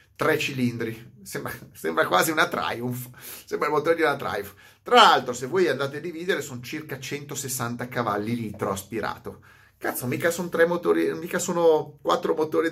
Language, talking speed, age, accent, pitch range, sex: Italian, 165 wpm, 30-49, native, 120-165 Hz, male